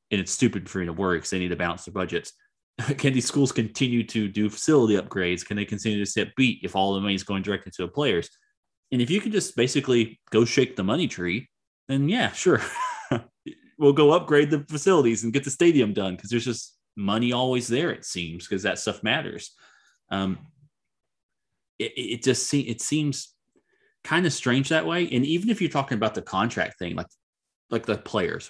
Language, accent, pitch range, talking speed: English, American, 100-140 Hz, 210 wpm